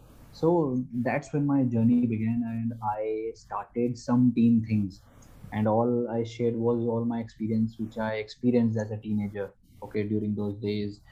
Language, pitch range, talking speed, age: English, 105-120 Hz, 160 wpm, 20-39